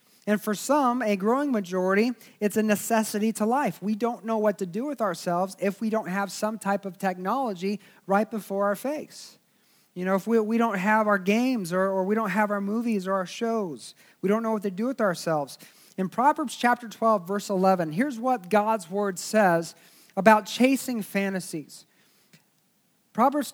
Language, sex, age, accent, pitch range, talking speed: English, male, 40-59, American, 195-240 Hz, 185 wpm